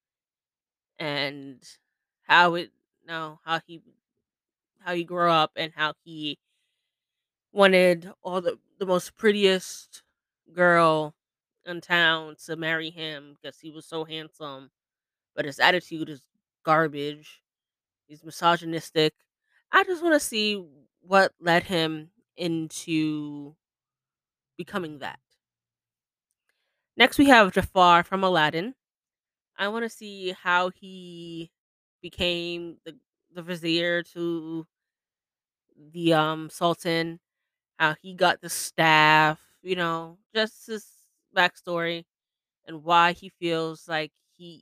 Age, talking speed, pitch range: 20-39, 110 wpm, 160-180 Hz